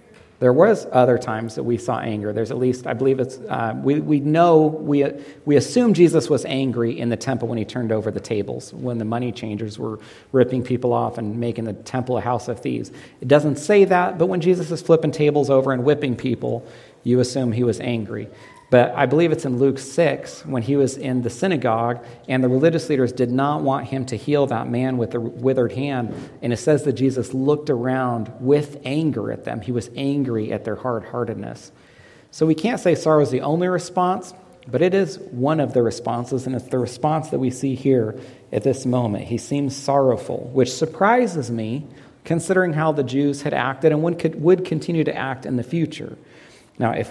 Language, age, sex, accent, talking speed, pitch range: English, 40-59, male, American, 210 wpm, 120-150 Hz